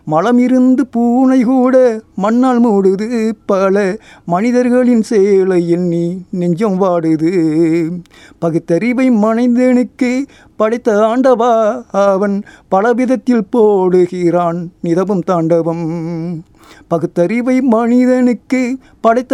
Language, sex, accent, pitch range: Tamil, male, native, 175-260 Hz